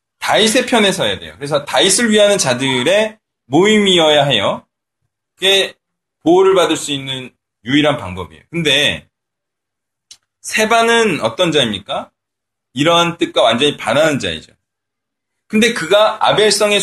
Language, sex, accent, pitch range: Korean, male, native, 135-210 Hz